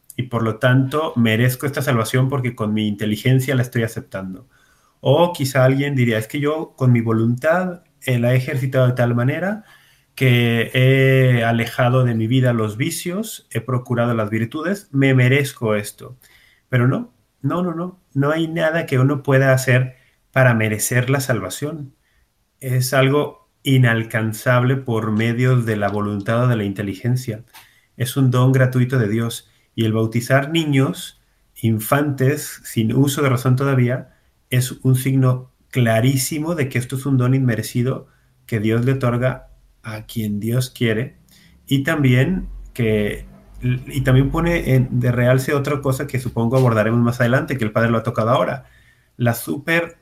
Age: 30-49